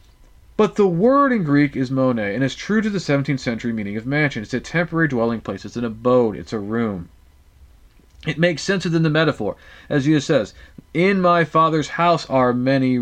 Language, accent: English, American